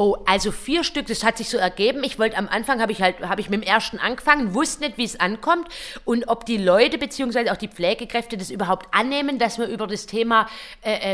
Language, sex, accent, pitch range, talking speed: German, female, German, 210-265 Hz, 235 wpm